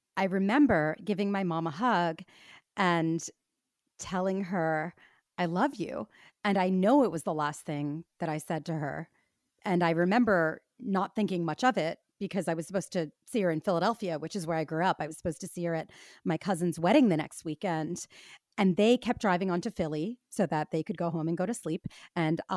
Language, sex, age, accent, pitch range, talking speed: English, female, 30-49, American, 165-200 Hz, 215 wpm